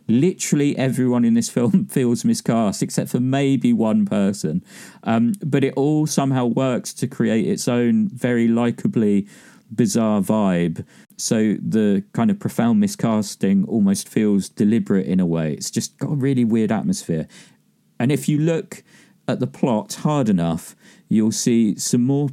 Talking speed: 155 wpm